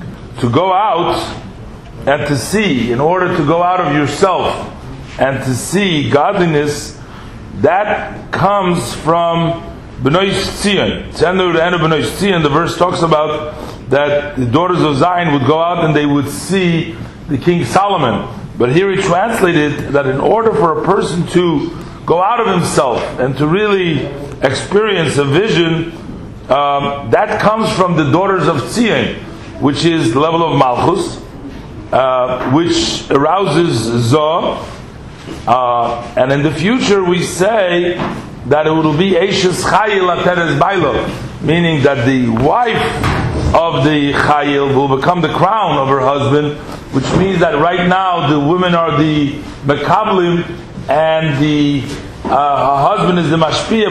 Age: 40-59